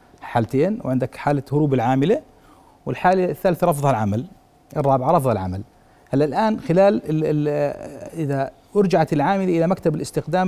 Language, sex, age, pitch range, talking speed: Arabic, male, 40-59, 135-175 Hz, 130 wpm